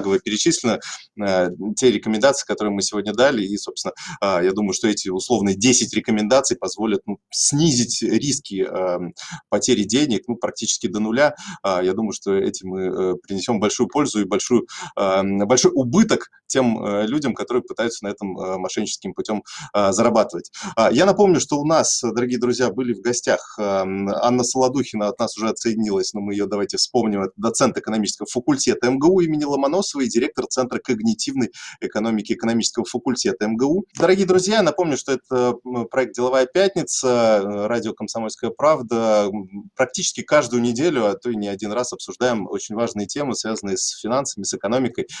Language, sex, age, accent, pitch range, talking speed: Russian, male, 20-39, native, 100-130 Hz, 150 wpm